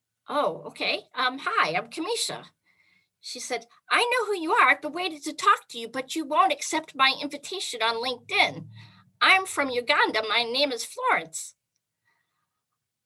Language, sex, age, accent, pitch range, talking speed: English, female, 50-69, American, 245-365 Hz, 155 wpm